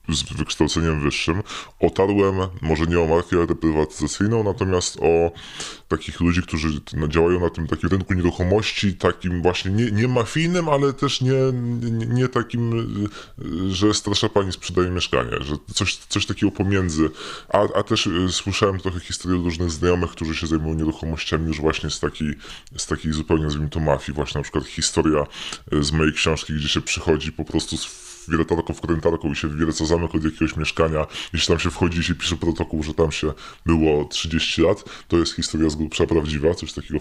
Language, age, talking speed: Polish, 20-39, 180 wpm